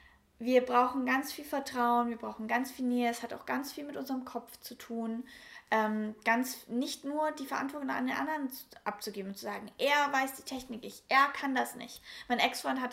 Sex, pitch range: female, 225-265 Hz